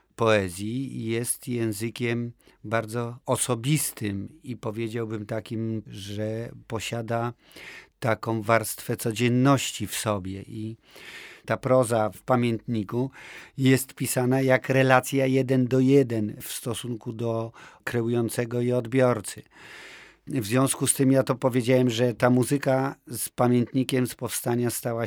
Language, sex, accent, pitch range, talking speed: Polish, male, native, 110-125 Hz, 115 wpm